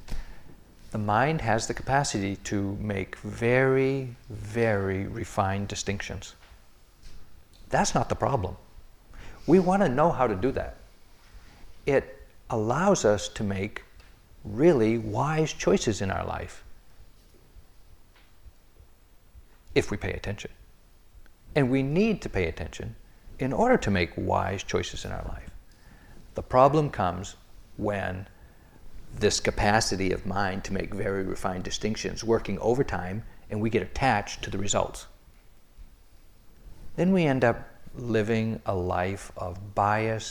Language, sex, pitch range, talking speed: English, male, 90-115 Hz, 125 wpm